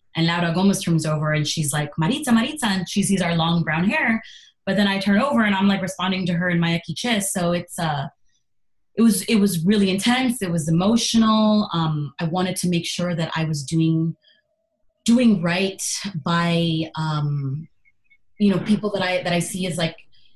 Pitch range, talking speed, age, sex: 160-195 Hz, 200 wpm, 20-39, female